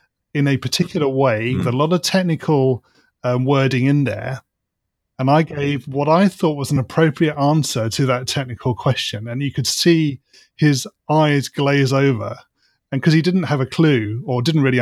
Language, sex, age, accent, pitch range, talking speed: English, male, 30-49, British, 120-150 Hz, 180 wpm